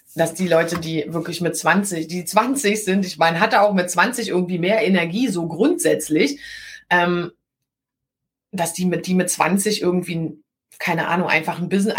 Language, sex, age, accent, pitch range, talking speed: German, female, 30-49, German, 165-215 Hz, 170 wpm